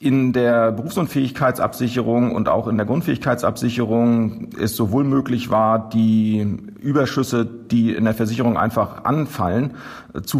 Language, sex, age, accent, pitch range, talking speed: German, male, 40-59, German, 110-130 Hz, 120 wpm